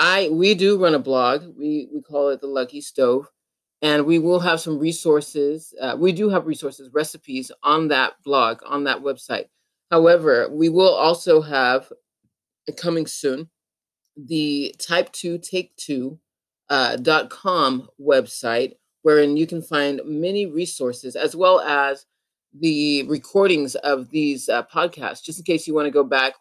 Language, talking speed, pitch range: English, 150 wpm, 135-170 Hz